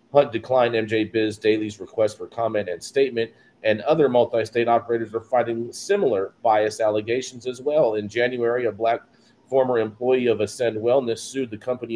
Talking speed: 165 wpm